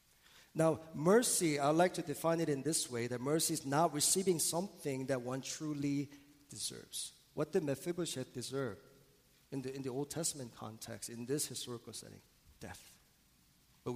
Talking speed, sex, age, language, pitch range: 160 wpm, male, 40-59, English, 125-165 Hz